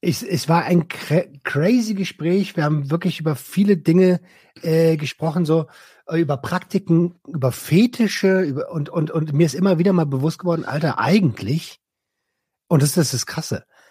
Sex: male